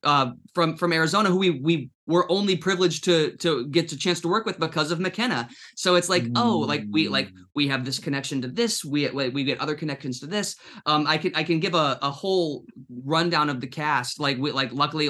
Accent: American